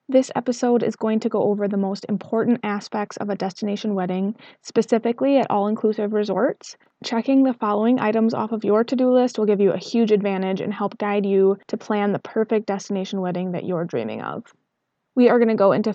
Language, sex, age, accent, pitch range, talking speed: English, female, 20-39, American, 190-220 Hz, 205 wpm